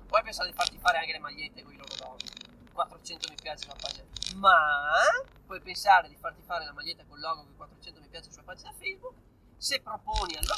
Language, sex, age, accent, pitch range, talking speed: Italian, male, 30-49, native, 195-295 Hz, 220 wpm